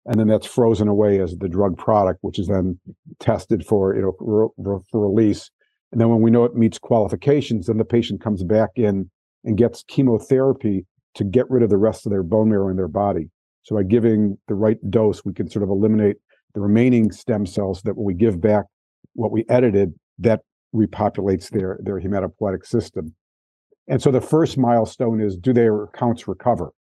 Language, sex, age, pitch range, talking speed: English, male, 50-69, 100-115 Hz, 195 wpm